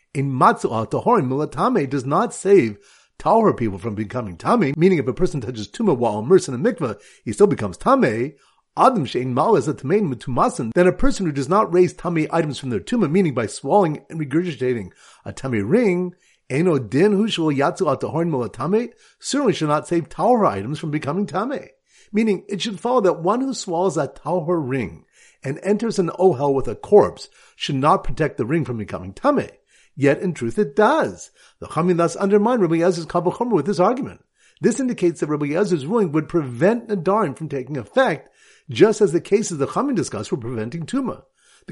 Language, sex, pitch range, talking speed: English, male, 135-200 Hz, 190 wpm